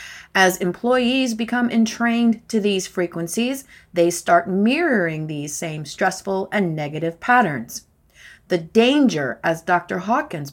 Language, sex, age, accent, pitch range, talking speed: English, female, 30-49, American, 170-230 Hz, 120 wpm